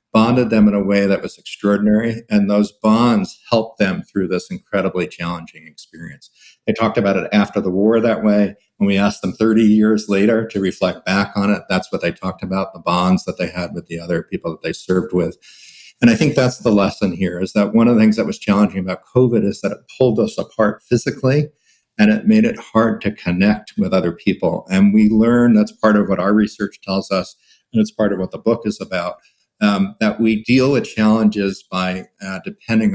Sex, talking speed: male, 220 wpm